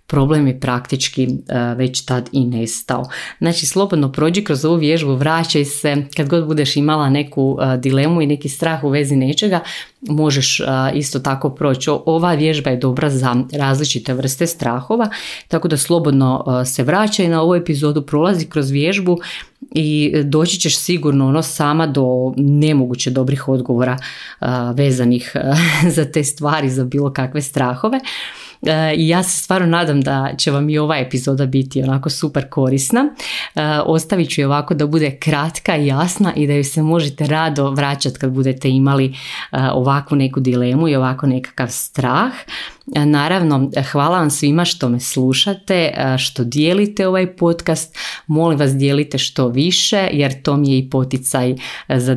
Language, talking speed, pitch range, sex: Croatian, 150 wpm, 130-160 Hz, female